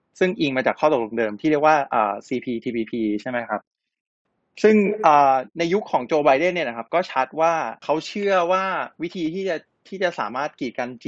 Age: 20-39